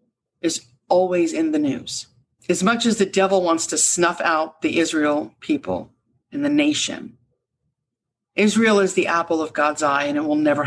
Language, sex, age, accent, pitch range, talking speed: English, female, 50-69, American, 135-185 Hz, 175 wpm